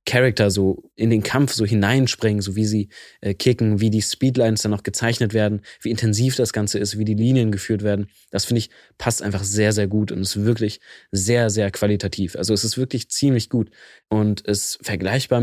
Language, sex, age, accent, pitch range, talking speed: German, male, 20-39, German, 105-120 Hz, 200 wpm